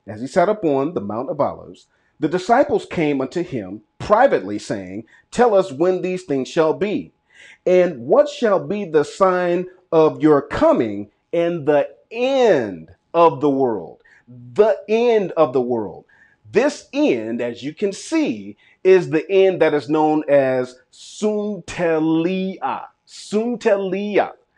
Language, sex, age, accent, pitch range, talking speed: English, male, 40-59, American, 140-205 Hz, 140 wpm